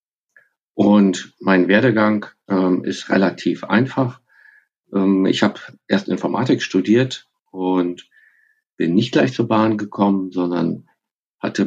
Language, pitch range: German, 90-110 Hz